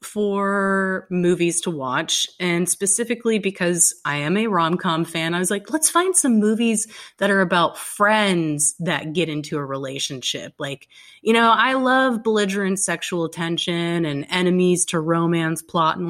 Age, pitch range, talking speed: 30-49, 165-220 Hz, 155 wpm